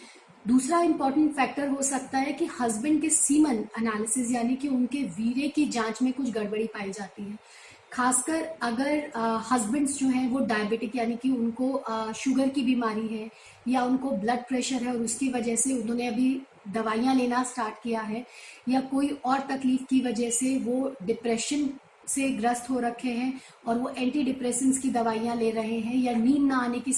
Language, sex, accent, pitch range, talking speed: Hindi, female, native, 230-275 Hz, 180 wpm